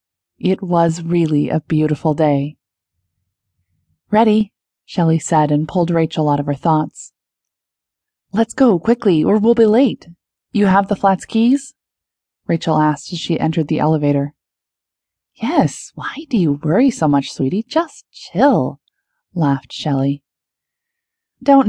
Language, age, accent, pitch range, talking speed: English, 20-39, American, 150-195 Hz, 135 wpm